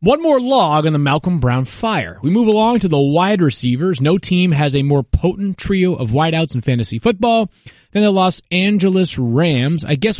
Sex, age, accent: male, 30-49, American